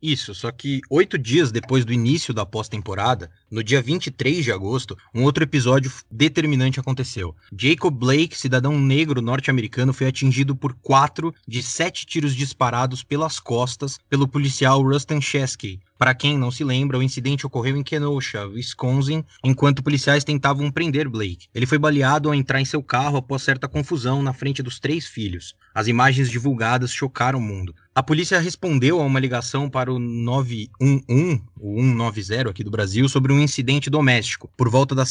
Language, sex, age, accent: Portuguese, male, 20-39, Brazilian